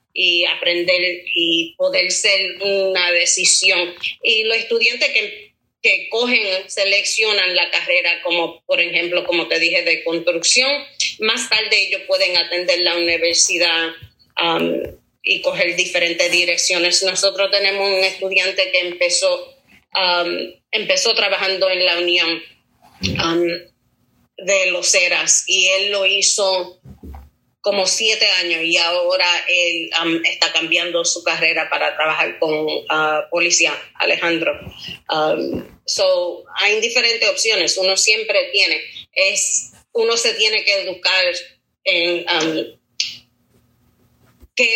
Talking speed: 120 wpm